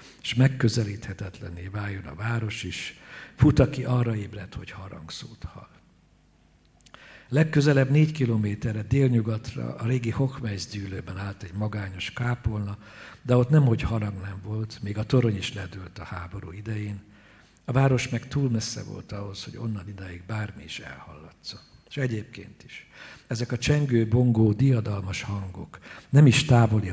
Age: 60-79